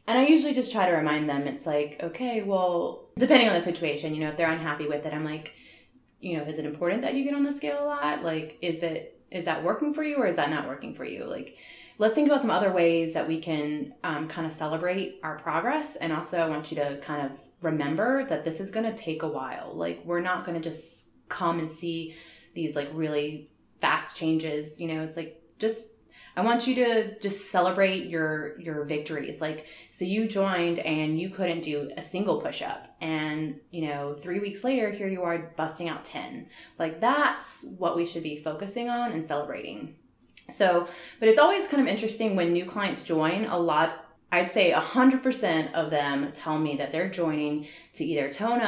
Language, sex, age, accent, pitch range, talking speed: English, female, 20-39, American, 155-200 Hz, 215 wpm